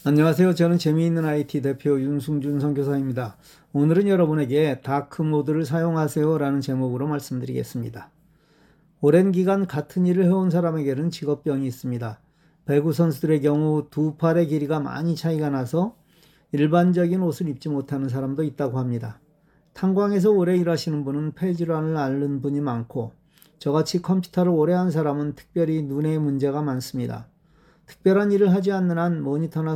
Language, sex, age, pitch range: Korean, male, 40-59, 145-170 Hz